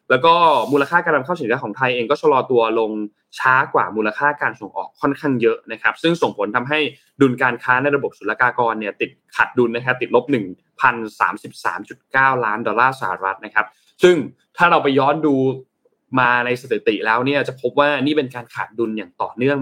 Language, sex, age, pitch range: Thai, male, 20-39, 115-150 Hz